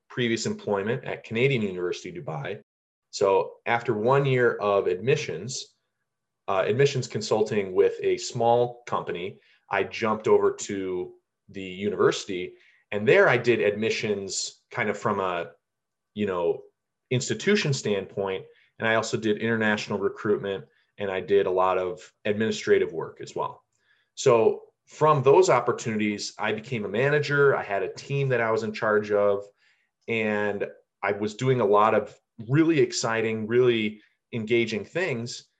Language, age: English, 20-39